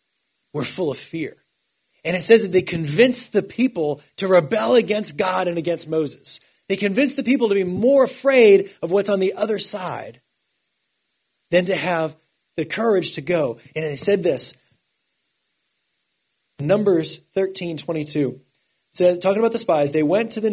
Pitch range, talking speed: 155-215 Hz, 170 wpm